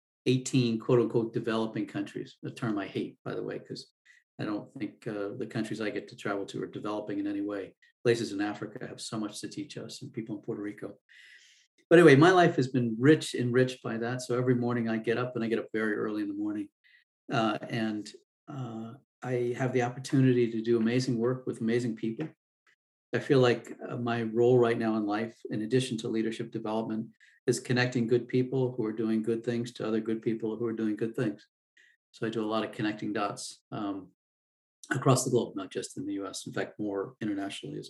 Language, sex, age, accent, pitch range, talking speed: English, male, 50-69, American, 110-130 Hz, 215 wpm